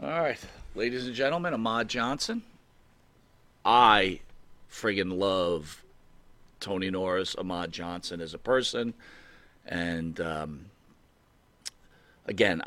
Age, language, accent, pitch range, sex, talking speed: 40-59, English, American, 85-110 Hz, male, 95 wpm